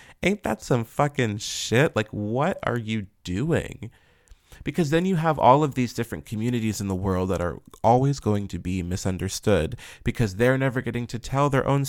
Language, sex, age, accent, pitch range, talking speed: English, male, 30-49, American, 100-135 Hz, 185 wpm